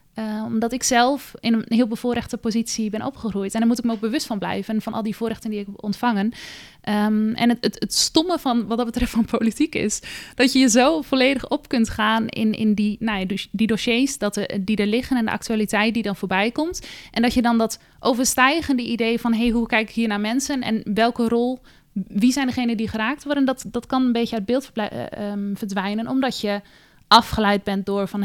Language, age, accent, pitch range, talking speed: Dutch, 20-39, Dutch, 205-245 Hz, 225 wpm